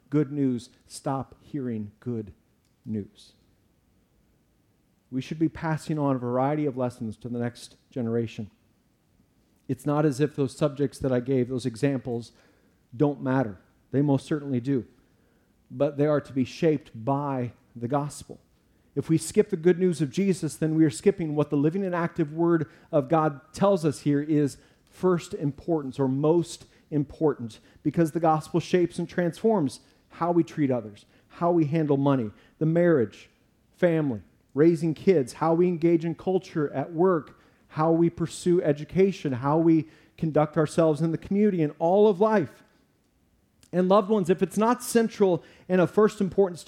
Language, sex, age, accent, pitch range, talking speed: English, male, 40-59, American, 130-170 Hz, 160 wpm